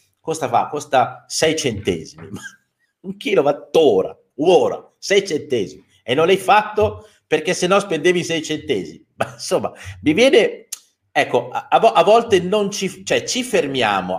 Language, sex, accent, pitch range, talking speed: Italian, male, native, 130-200 Hz, 140 wpm